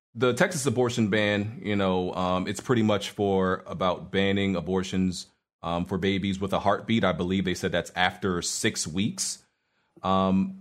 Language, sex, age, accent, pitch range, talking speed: English, male, 30-49, American, 95-125 Hz, 165 wpm